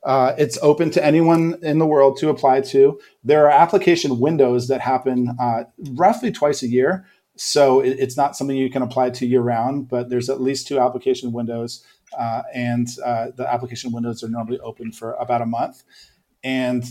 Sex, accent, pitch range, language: male, American, 120-150 Hz, English